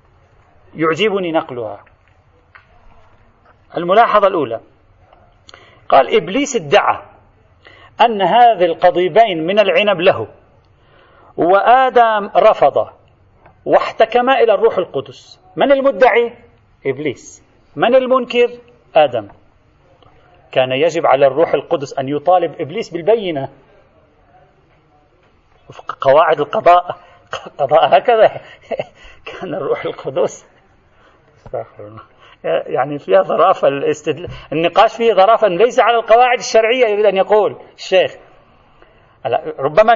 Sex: male